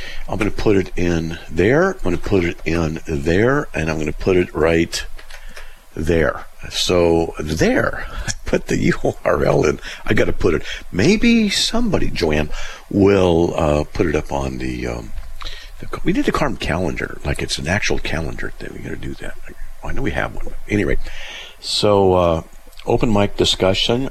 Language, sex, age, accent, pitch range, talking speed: English, male, 50-69, American, 80-105 Hz, 185 wpm